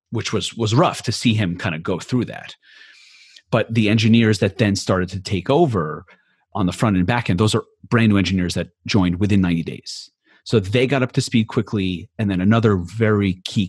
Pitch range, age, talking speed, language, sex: 90-115 Hz, 30-49, 215 wpm, English, male